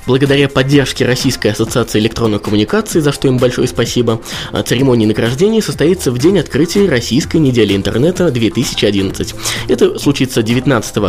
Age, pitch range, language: 20-39, 110-160 Hz, Russian